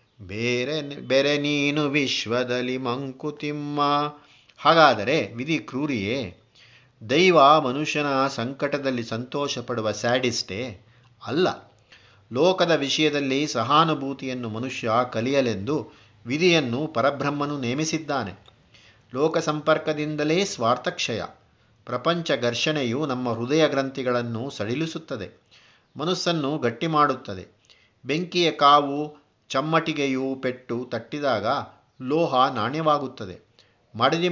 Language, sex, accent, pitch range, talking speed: Kannada, male, native, 120-150 Hz, 75 wpm